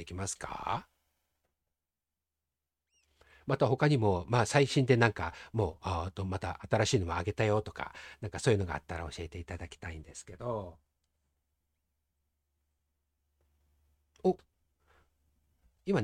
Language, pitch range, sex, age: Japanese, 90-145 Hz, male, 50-69